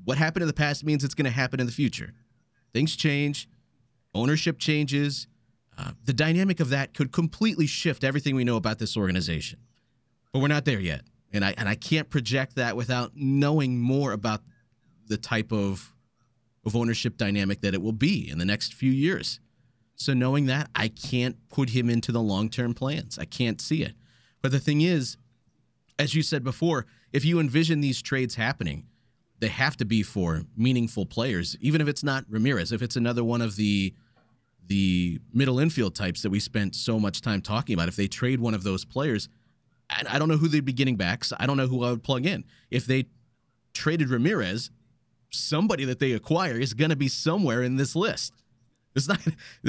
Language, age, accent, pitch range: English, 30-49, American, 115-145 Hz